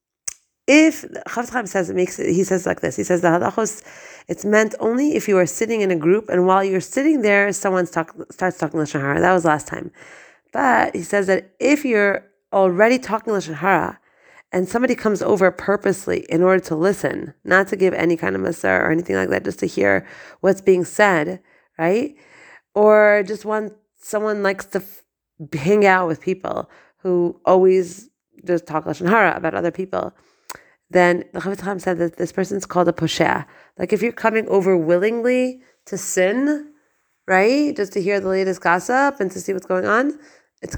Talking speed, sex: 185 wpm, female